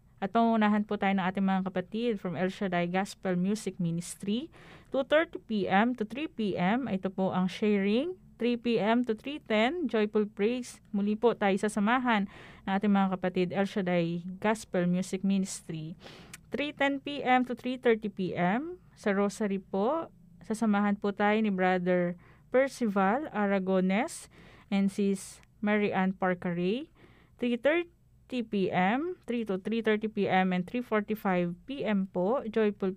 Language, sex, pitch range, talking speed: Filipino, female, 185-230 Hz, 120 wpm